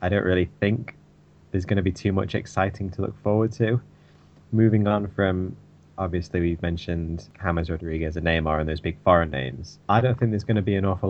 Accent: British